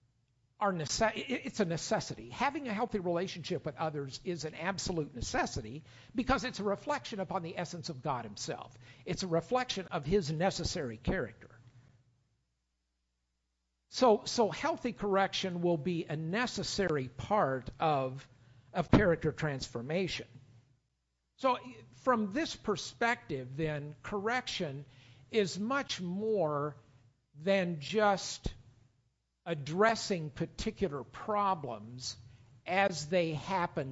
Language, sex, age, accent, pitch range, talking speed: English, male, 50-69, American, 120-185 Hz, 105 wpm